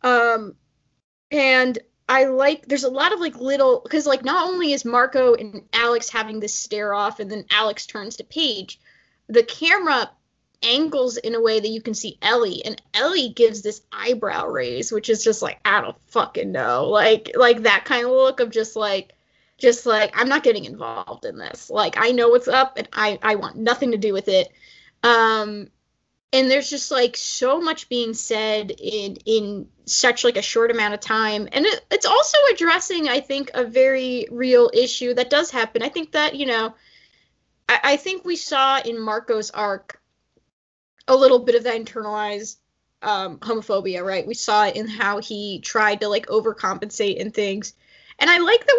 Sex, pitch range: female, 220-290 Hz